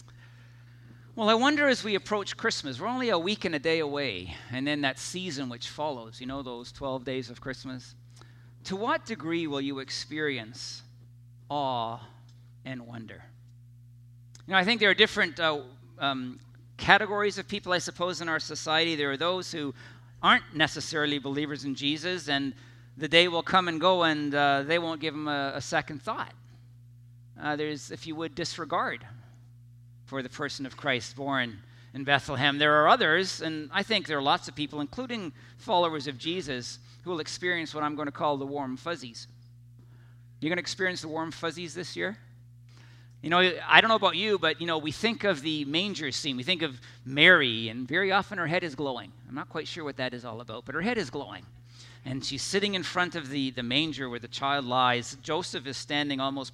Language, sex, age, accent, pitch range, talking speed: English, male, 50-69, American, 120-165 Hz, 195 wpm